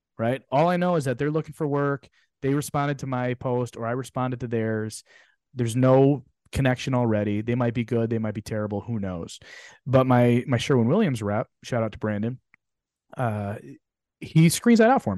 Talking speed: 200 wpm